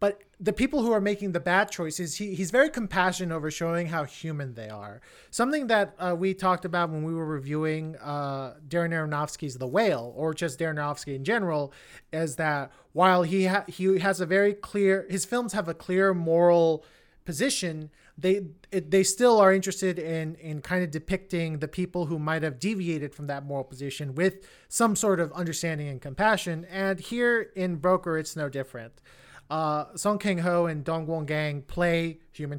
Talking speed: 175 wpm